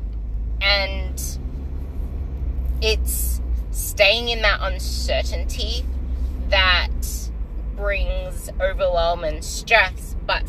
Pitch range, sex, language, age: 65-100 Hz, female, English, 20-39